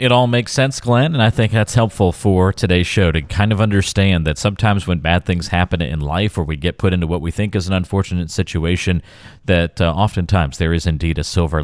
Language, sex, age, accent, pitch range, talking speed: English, male, 40-59, American, 80-105 Hz, 230 wpm